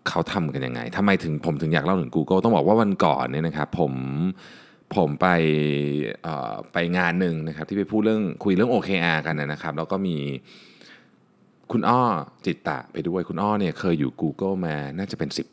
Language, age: Thai, 20-39